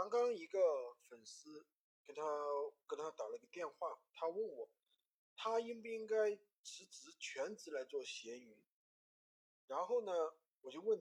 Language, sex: Chinese, male